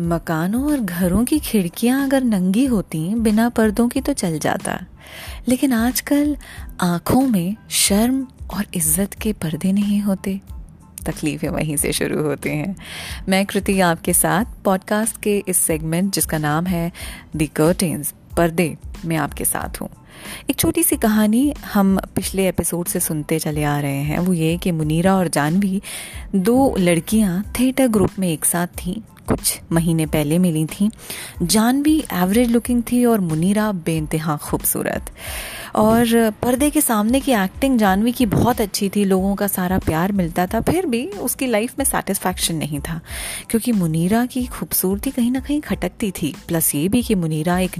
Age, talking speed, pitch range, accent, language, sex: 30-49, 160 wpm, 170-235 Hz, native, Hindi, female